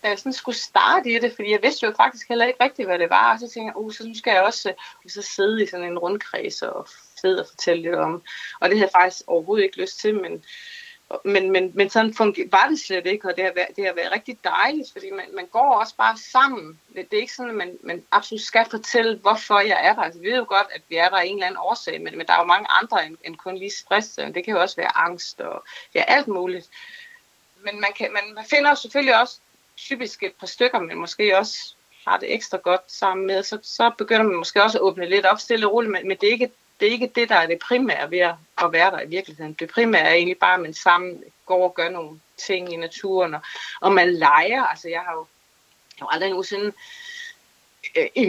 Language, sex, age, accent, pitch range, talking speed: Danish, female, 30-49, native, 185-250 Hz, 255 wpm